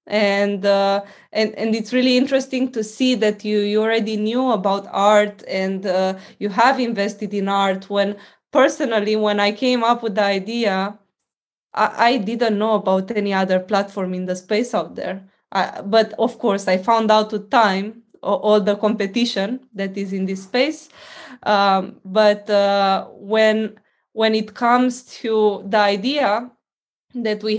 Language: Romanian